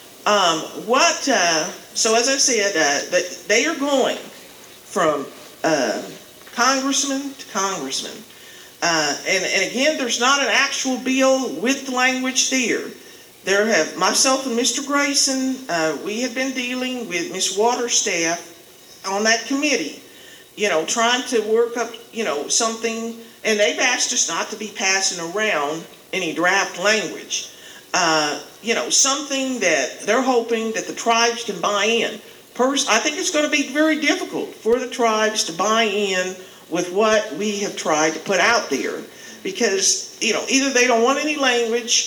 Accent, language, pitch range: American, English, 195-260 Hz